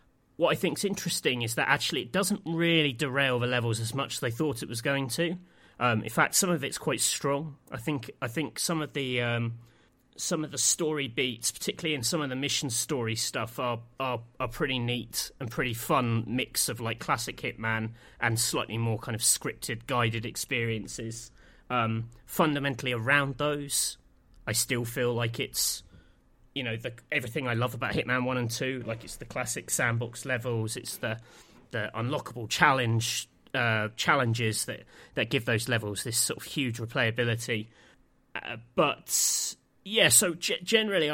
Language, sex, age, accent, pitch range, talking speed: English, male, 30-49, British, 115-150 Hz, 175 wpm